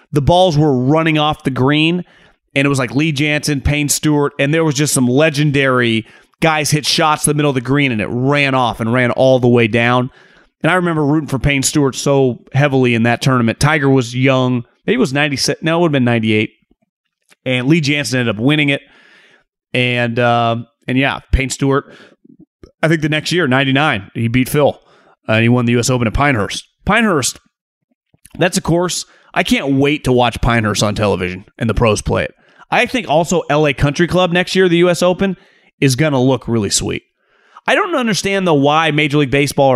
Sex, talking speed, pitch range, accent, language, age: male, 205 wpm, 125-155 Hz, American, English, 30-49